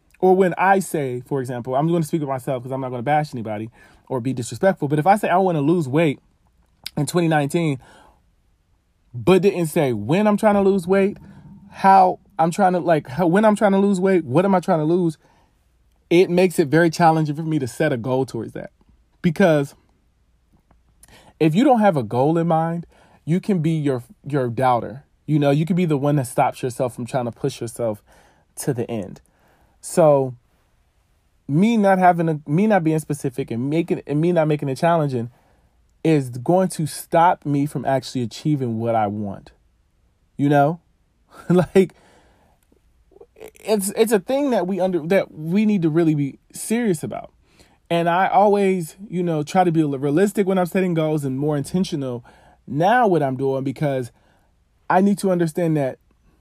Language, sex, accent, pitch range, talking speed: English, male, American, 130-185 Hz, 190 wpm